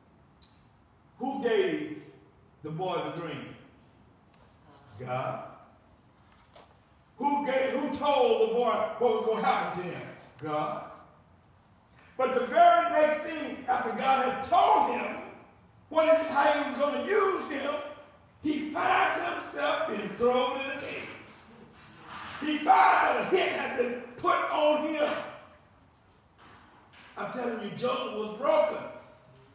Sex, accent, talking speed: male, American, 125 wpm